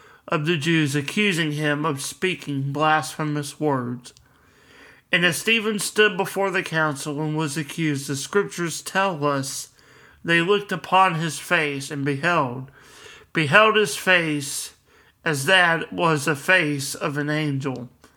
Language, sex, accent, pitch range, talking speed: English, male, American, 145-175 Hz, 135 wpm